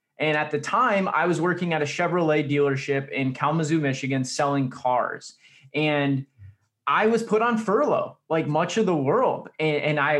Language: English